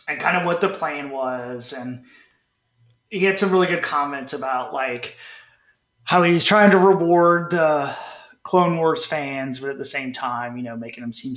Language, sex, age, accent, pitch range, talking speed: English, male, 30-49, American, 125-185 Hz, 185 wpm